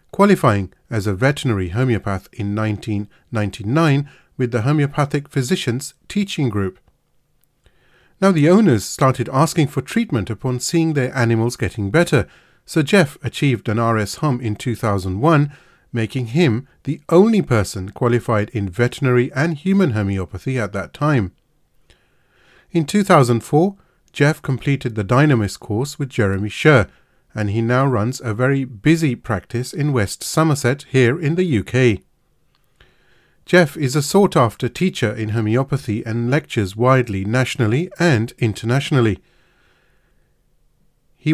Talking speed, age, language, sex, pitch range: 125 wpm, 30-49, English, male, 115-150 Hz